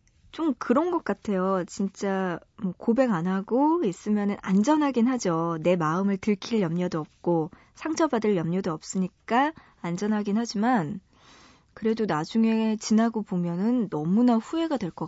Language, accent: Korean, native